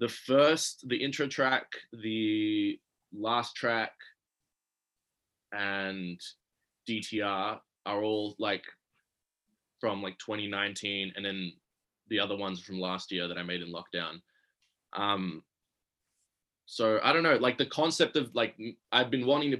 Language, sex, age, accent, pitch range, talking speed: English, male, 20-39, Australian, 95-110 Hz, 130 wpm